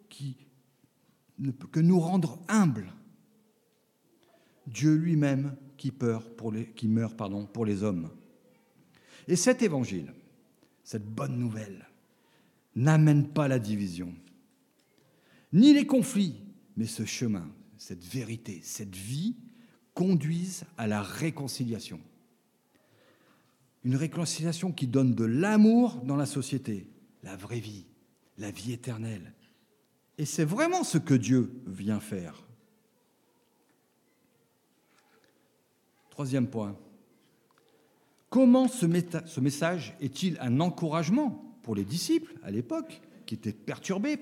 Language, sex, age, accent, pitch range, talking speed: French, male, 50-69, French, 110-185 Hz, 115 wpm